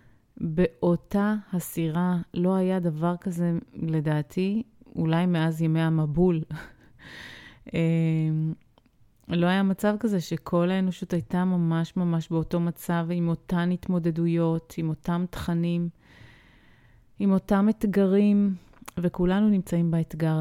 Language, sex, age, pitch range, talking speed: Hebrew, female, 30-49, 160-180 Hz, 100 wpm